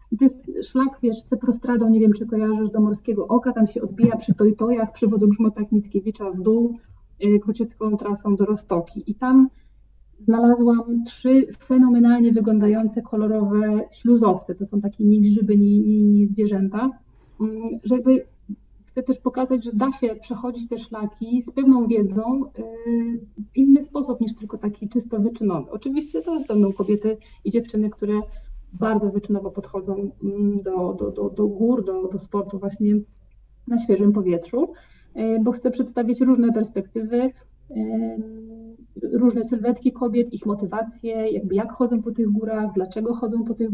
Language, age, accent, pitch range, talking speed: Polish, 30-49, native, 210-240 Hz, 145 wpm